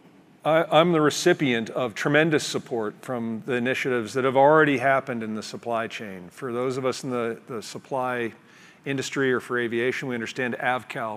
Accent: American